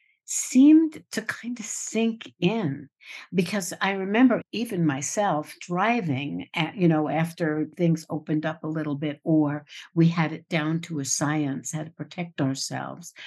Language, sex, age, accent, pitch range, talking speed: English, female, 60-79, American, 150-205 Hz, 150 wpm